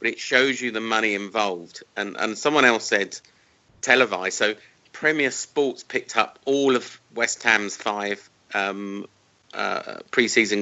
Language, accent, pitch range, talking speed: English, British, 100-130 Hz, 145 wpm